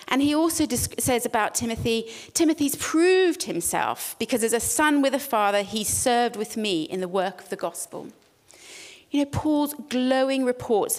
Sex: female